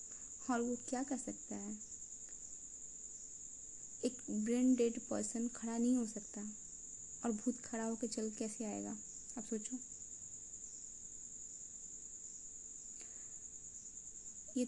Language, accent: Hindi, native